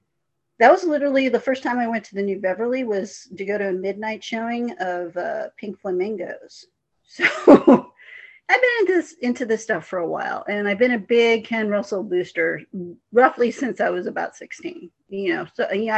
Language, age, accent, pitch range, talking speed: English, 40-59, American, 200-275 Hz, 195 wpm